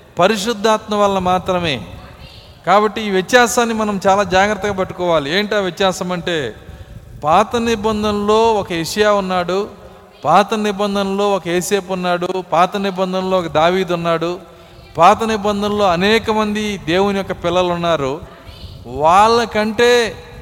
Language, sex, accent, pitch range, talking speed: Telugu, male, native, 170-215 Hz, 110 wpm